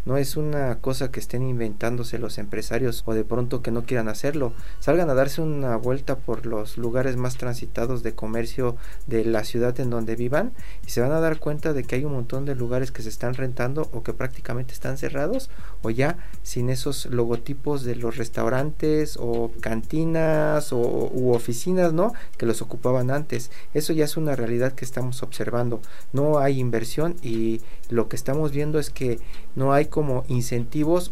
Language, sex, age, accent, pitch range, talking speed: Spanish, male, 40-59, Mexican, 115-140 Hz, 185 wpm